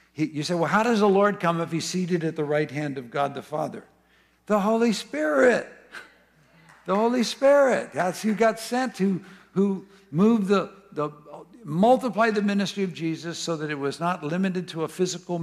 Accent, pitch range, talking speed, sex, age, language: American, 145-195 Hz, 175 wpm, male, 60-79, English